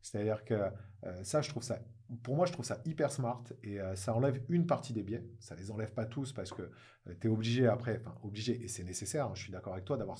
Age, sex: 40-59, male